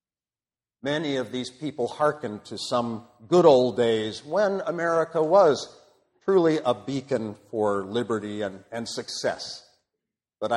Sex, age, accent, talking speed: male, 50-69, American, 125 wpm